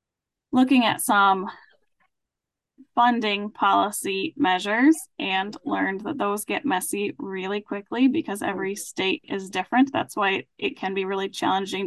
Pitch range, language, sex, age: 190-265 Hz, English, female, 10-29